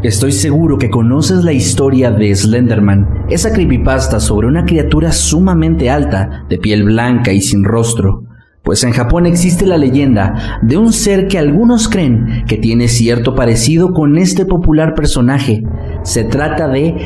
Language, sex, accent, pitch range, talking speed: Spanish, male, Mexican, 105-135 Hz, 155 wpm